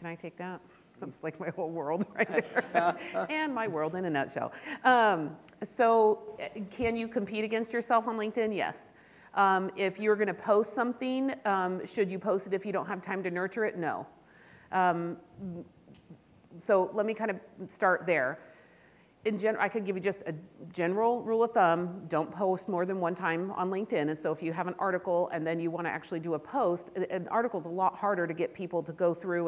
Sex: female